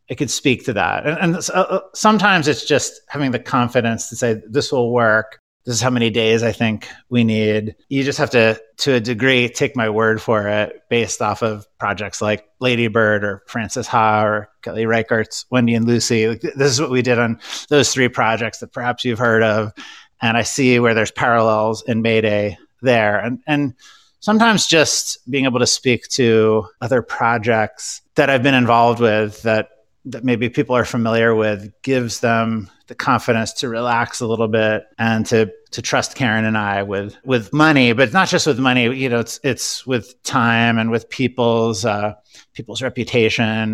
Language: English